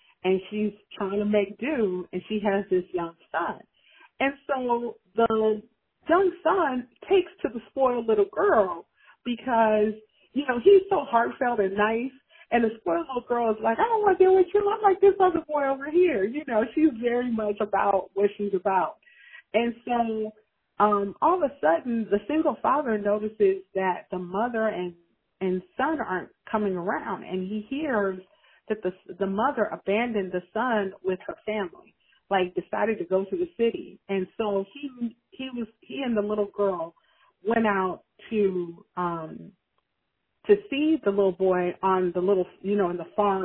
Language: English